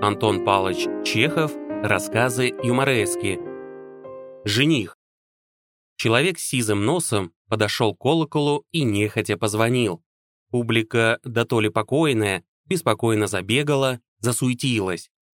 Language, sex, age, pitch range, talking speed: Russian, male, 20-39, 105-145 Hz, 95 wpm